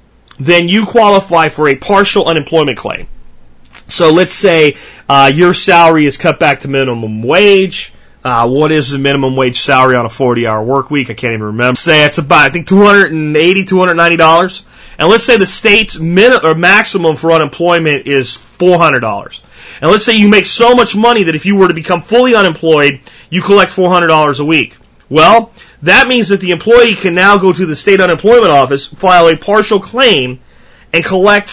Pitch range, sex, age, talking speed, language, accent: 145-200 Hz, male, 30-49, 200 wpm, English, American